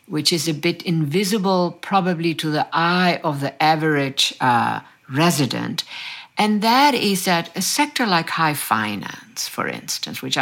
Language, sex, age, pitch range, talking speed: French, female, 60-79, 160-230 Hz, 150 wpm